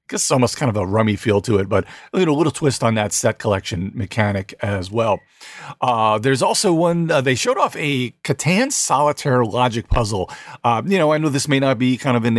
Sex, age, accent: male, 40-59, American